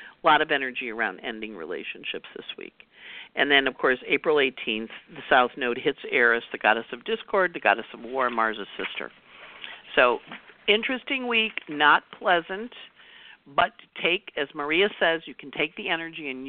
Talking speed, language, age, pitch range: 165 wpm, English, 50-69, 130-210 Hz